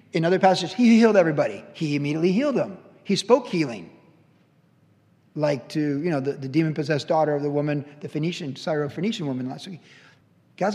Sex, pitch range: male, 150-195 Hz